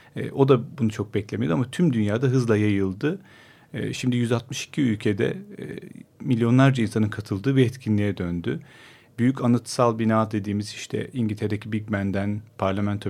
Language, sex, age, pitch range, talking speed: Turkish, male, 40-59, 105-135 Hz, 130 wpm